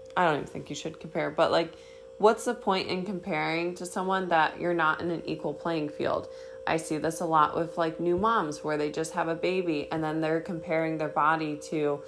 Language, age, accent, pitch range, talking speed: English, 20-39, American, 160-220 Hz, 230 wpm